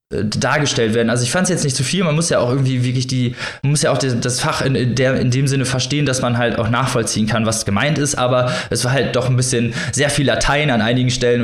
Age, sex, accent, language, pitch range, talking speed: 20-39, male, German, German, 115-135 Hz, 285 wpm